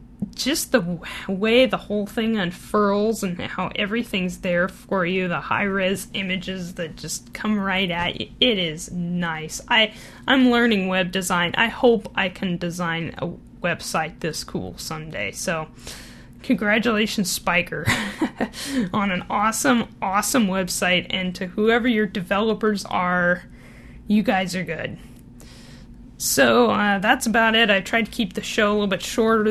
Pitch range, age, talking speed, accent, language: 175-225 Hz, 10-29, 145 wpm, American, English